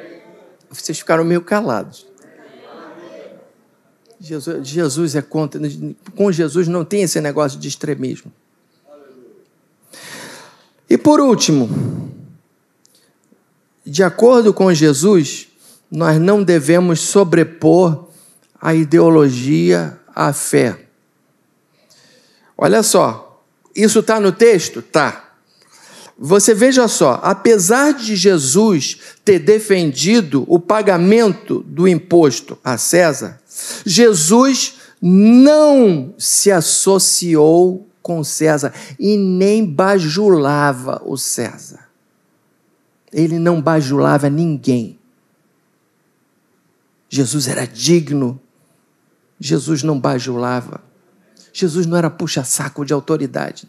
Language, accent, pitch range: Portuguese, Brazilian, 150-200 Hz